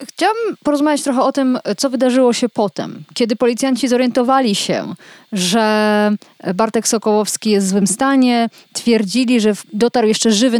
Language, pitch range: Polish, 210-270 Hz